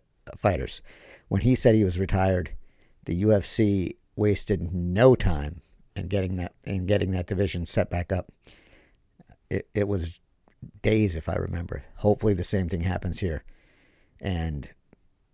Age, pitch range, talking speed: 50-69, 90-105 Hz, 140 wpm